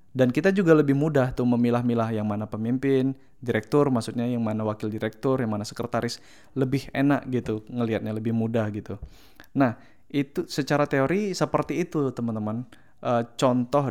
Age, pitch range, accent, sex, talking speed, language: 20-39, 115-140 Hz, native, male, 150 wpm, Indonesian